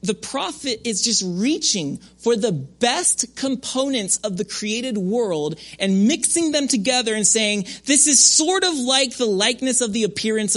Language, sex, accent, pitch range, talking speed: English, male, American, 150-220 Hz, 165 wpm